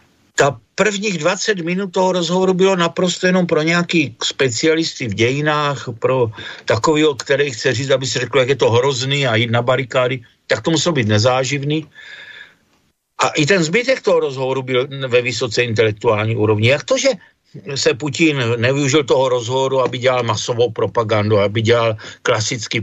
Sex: male